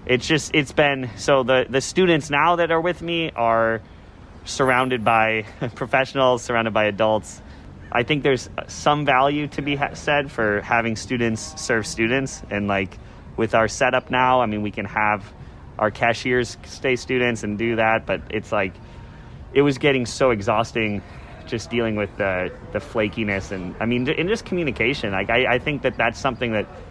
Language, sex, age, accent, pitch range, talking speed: English, male, 30-49, American, 105-135 Hz, 175 wpm